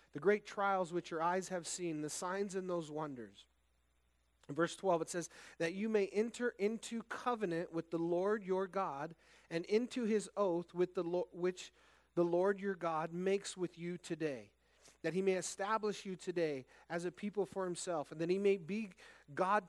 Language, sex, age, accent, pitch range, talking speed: English, male, 30-49, American, 165-205 Hz, 190 wpm